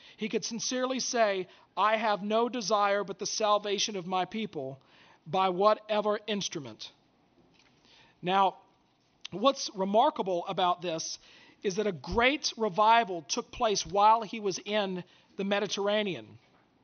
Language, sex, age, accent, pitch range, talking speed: English, male, 40-59, American, 195-235 Hz, 125 wpm